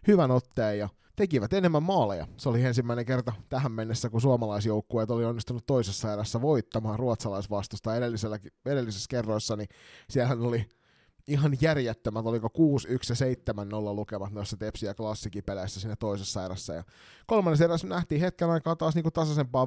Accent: native